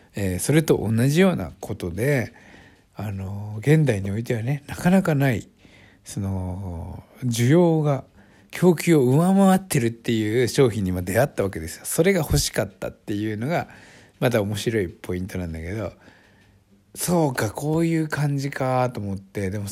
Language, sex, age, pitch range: Japanese, male, 60-79, 100-165 Hz